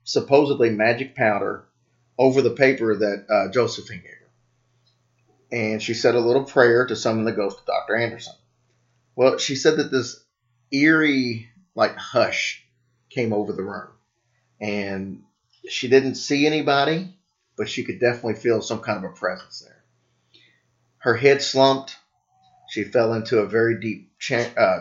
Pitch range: 115-130 Hz